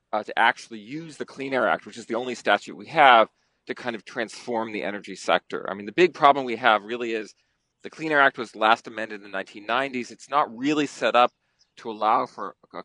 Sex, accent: male, American